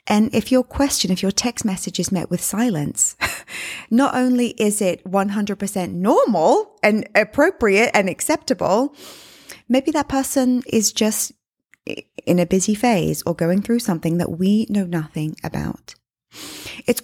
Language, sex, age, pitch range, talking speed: English, female, 20-39, 180-240 Hz, 145 wpm